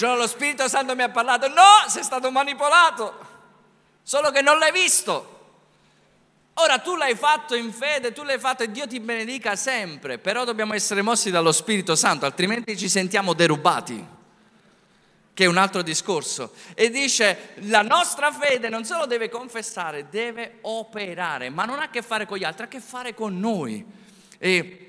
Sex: male